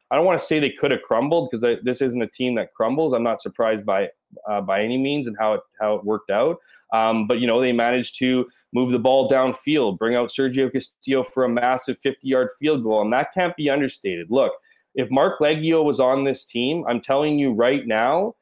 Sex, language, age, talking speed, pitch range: male, English, 20-39, 230 wpm, 110-145 Hz